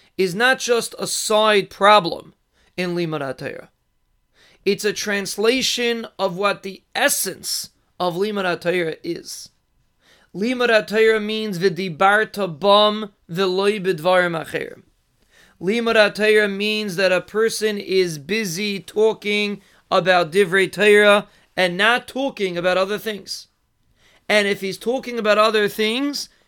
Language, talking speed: English, 100 wpm